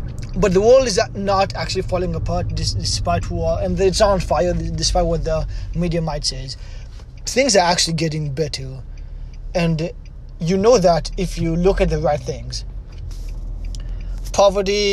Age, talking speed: 20-39, 150 wpm